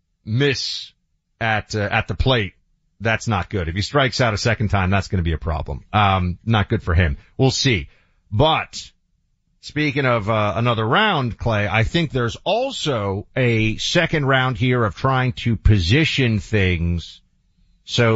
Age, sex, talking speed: 40-59, male, 165 wpm